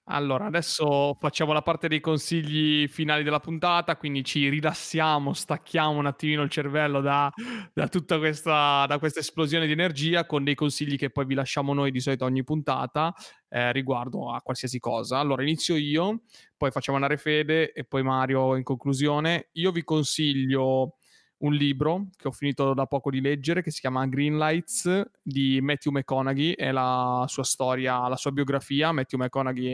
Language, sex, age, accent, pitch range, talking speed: Italian, male, 20-39, native, 135-155 Hz, 170 wpm